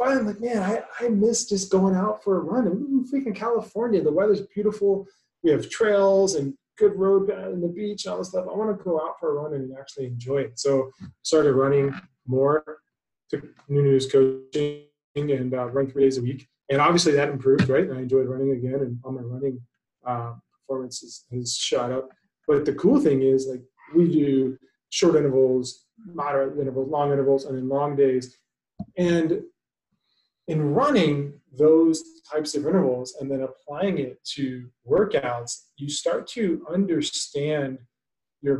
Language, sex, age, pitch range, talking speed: English, male, 30-49, 135-190 Hz, 175 wpm